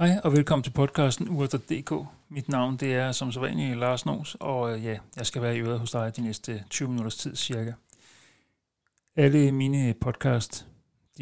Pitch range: 115-140 Hz